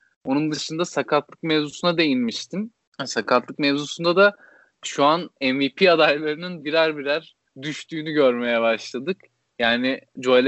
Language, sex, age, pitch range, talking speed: Turkish, male, 20-39, 125-155 Hz, 110 wpm